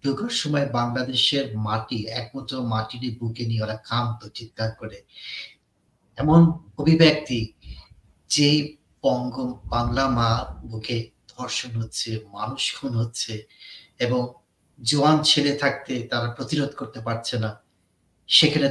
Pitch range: 110-135 Hz